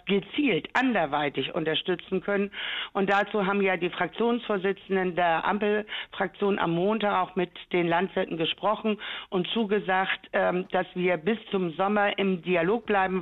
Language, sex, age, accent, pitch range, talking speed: German, female, 60-79, German, 170-200 Hz, 130 wpm